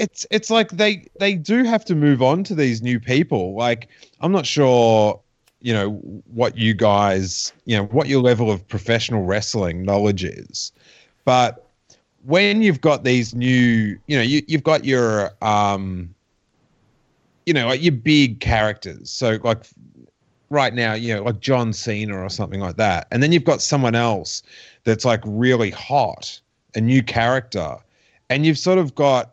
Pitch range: 110-135 Hz